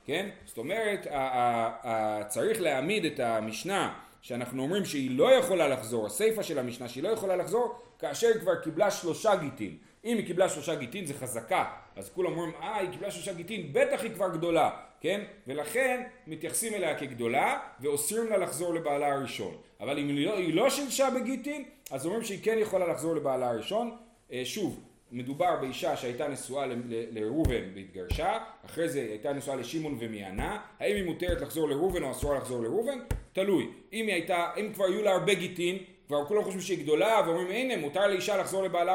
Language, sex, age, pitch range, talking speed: Hebrew, male, 30-49, 125-195 Hz, 180 wpm